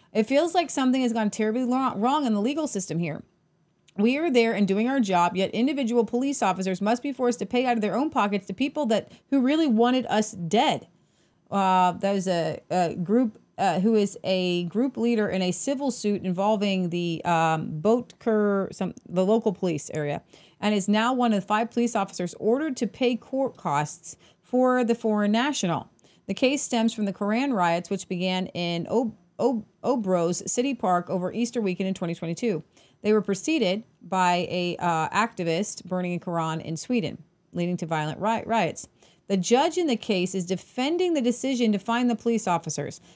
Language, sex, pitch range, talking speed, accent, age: English, female, 185-245 Hz, 190 wpm, American, 30-49